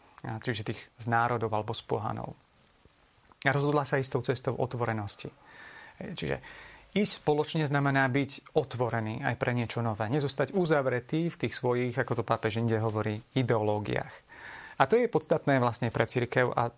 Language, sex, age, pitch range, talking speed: Slovak, male, 30-49, 120-145 Hz, 150 wpm